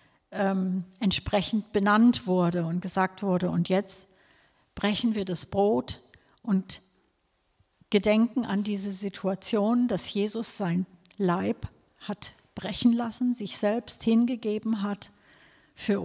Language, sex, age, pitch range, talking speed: German, female, 50-69, 185-220 Hz, 110 wpm